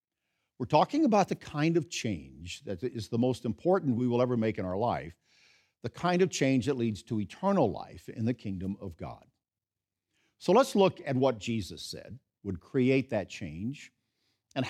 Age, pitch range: 50-69, 105-155 Hz